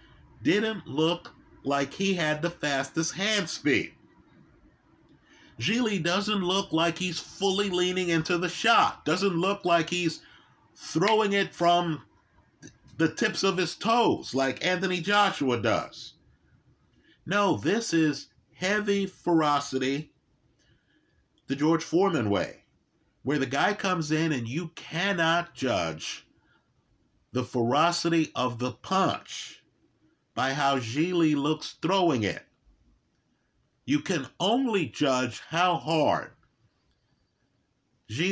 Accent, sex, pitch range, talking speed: American, male, 125-175 Hz, 110 wpm